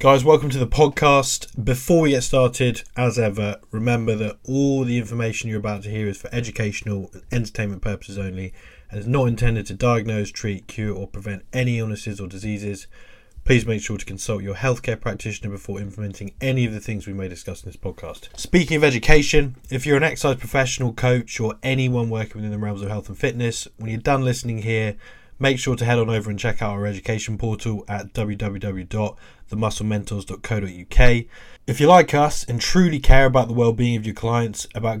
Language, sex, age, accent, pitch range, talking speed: English, male, 20-39, British, 105-125 Hz, 195 wpm